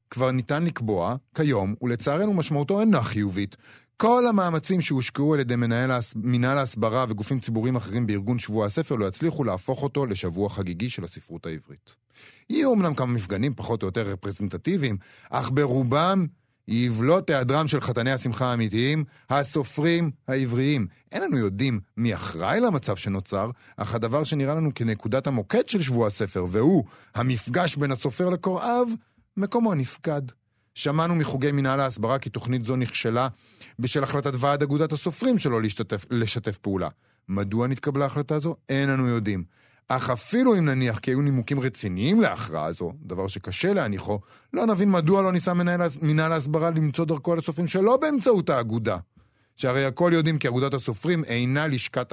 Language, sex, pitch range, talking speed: Hebrew, male, 110-150 Hz, 150 wpm